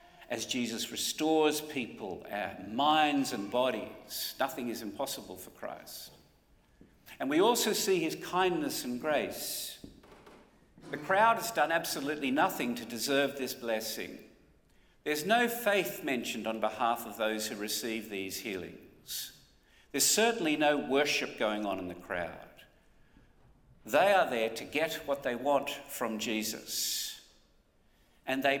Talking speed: 130 wpm